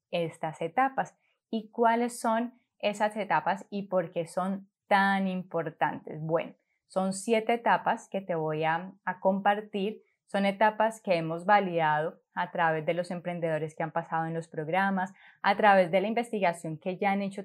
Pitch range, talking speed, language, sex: 170-200 Hz, 165 wpm, Spanish, female